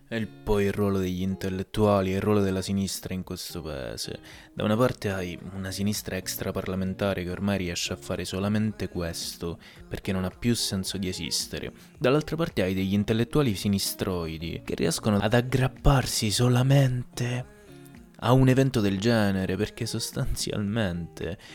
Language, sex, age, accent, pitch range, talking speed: Italian, male, 20-39, native, 95-110 Hz, 145 wpm